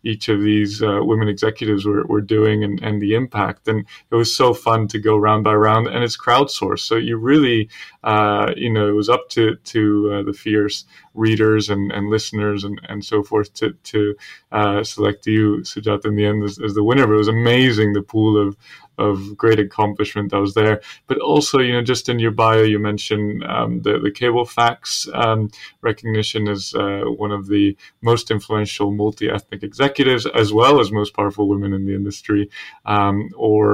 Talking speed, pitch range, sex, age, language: 195 wpm, 105-115 Hz, male, 20-39, English